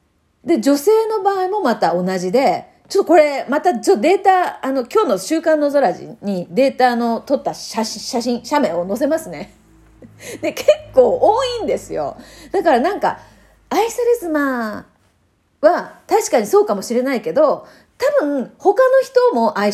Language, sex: Japanese, female